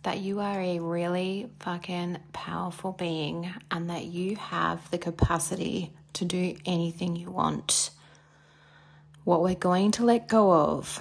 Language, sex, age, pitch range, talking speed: English, female, 30-49, 155-195 Hz, 140 wpm